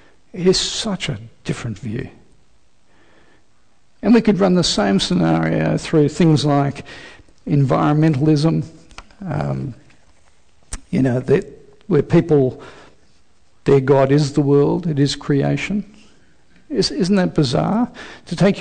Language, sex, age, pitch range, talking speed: English, male, 60-79, 135-175 Hz, 120 wpm